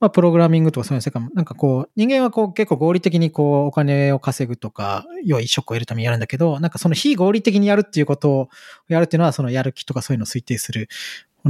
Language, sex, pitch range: Japanese, male, 125-185 Hz